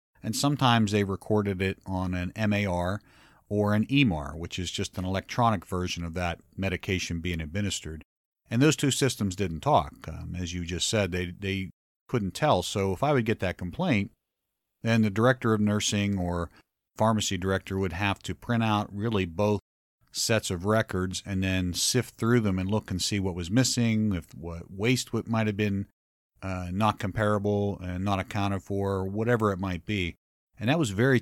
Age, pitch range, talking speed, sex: 40-59, 90-110 Hz, 185 wpm, male